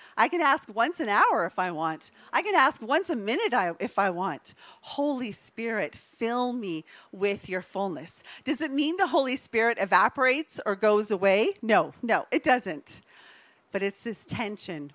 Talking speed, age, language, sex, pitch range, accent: 175 wpm, 40-59, English, female, 195-270 Hz, American